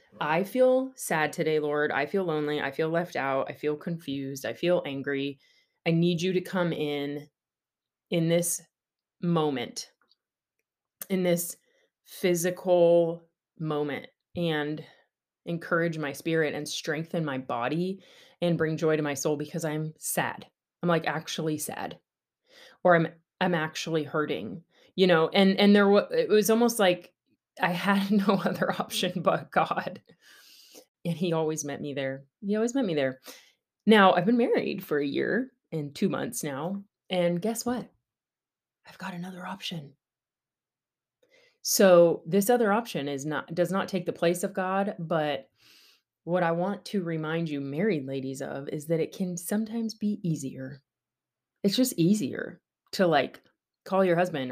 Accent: American